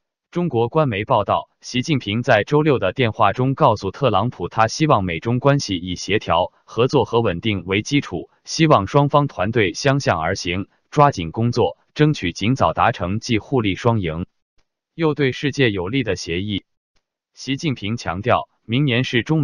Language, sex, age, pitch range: Chinese, male, 20-39, 100-140 Hz